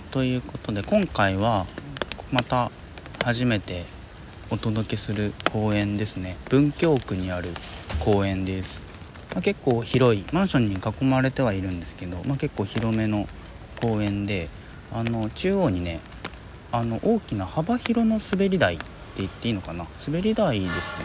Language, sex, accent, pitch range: Japanese, male, native, 90-125 Hz